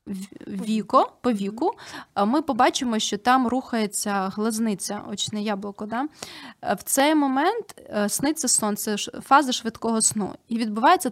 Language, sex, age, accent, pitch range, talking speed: Ukrainian, female, 20-39, native, 210-265 Hz, 120 wpm